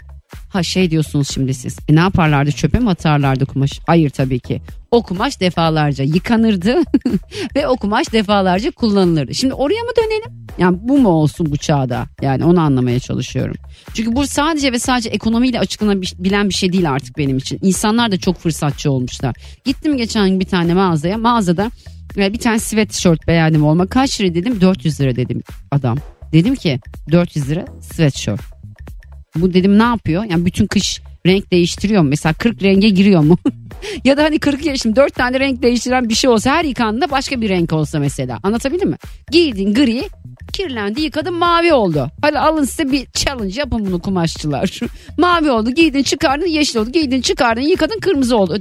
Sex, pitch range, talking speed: female, 155-255 Hz, 175 wpm